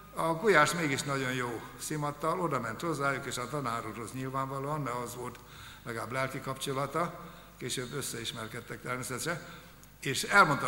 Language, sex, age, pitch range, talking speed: Hungarian, male, 60-79, 125-160 Hz, 135 wpm